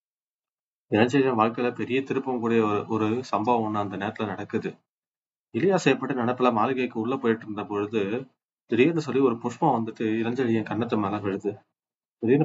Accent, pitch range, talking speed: native, 105-125 Hz, 140 wpm